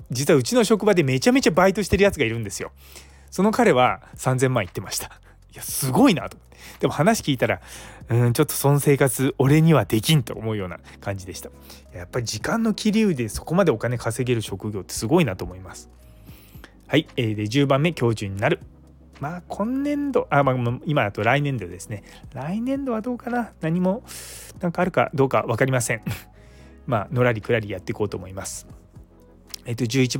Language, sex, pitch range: Japanese, male, 95-145 Hz